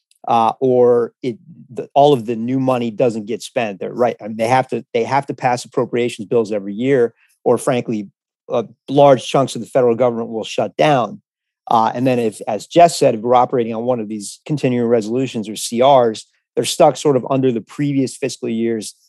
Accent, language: American, English